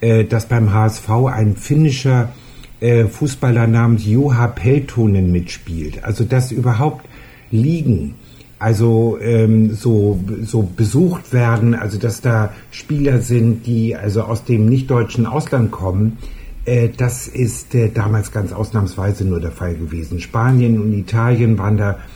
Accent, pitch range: German, 105-125 Hz